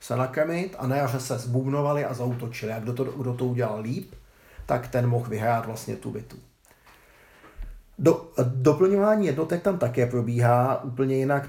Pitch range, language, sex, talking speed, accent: 120-140 Hz, Czech, male, 155 wpm, native